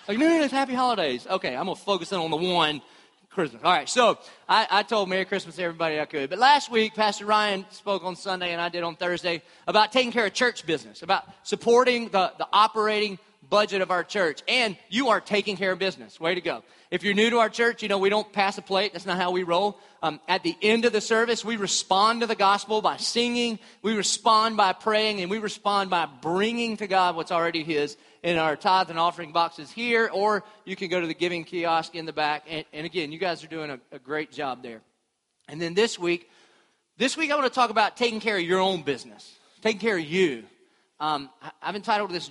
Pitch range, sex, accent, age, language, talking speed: 165-215 Hz, male, American, 30-49, English, 240 wpm